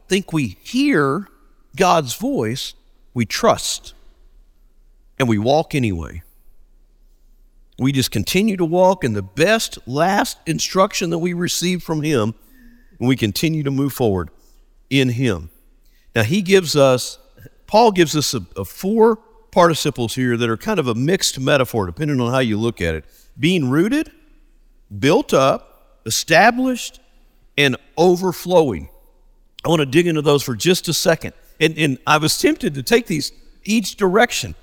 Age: 50-69